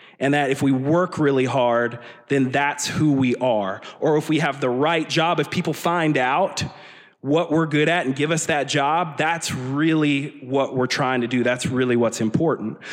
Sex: male